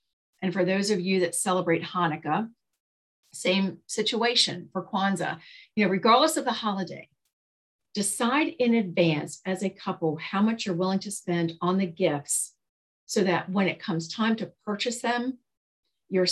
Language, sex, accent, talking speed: English, female, American, 160 wpm